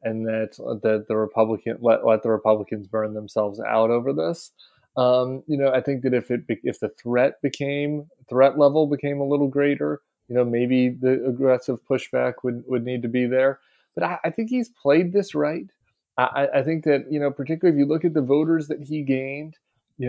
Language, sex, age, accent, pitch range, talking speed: English, male, 30-49, American, 125-145 Hz, 205 wpm